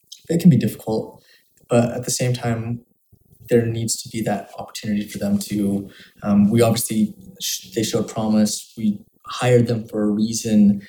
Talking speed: 165 wpm